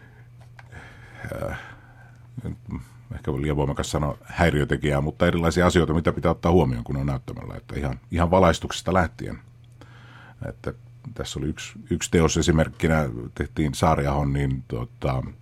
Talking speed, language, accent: 125 wpm, Finnish, native